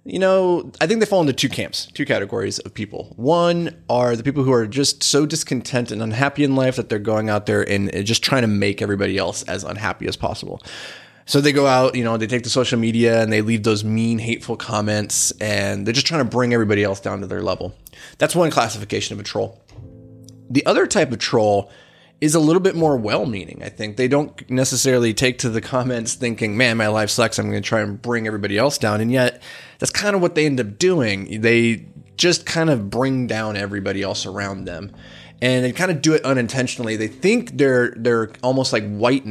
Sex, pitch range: male, 105-130 Hz